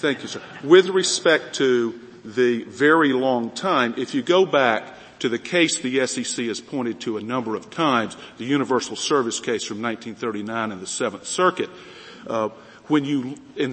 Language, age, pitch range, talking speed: English, 50-69, 115-155 Hz, 175 wpm